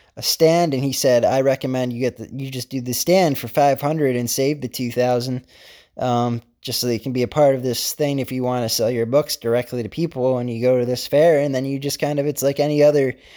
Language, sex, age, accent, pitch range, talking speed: English, male, 20-39, American, 120-135 Hz, 270 wpm